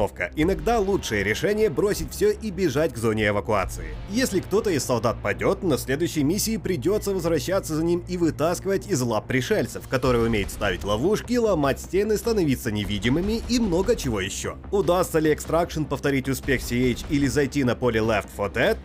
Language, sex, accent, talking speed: Russian, male, native, 165 wpm